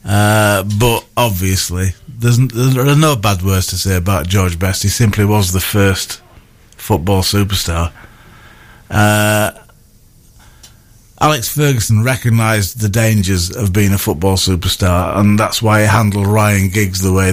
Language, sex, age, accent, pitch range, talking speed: English, male, 40-59, British, 95-115 Hz, 140 wpm